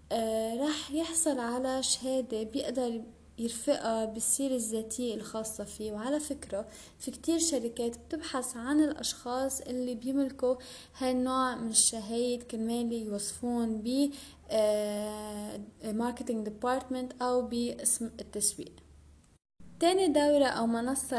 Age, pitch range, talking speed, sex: 20-39, 225-275 Hz, 100 wpm, female